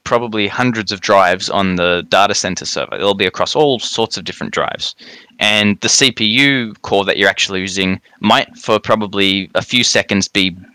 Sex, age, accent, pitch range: male, 20-39, Australian, 95-115 Hz